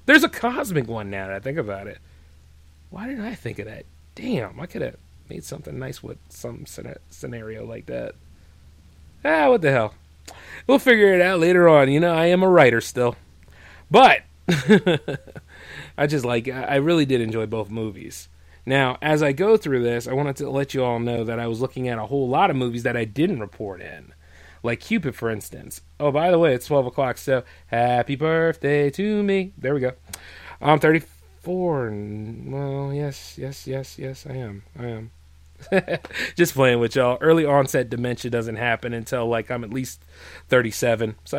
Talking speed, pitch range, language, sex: 185 wpm, 85-140 Hz, English, male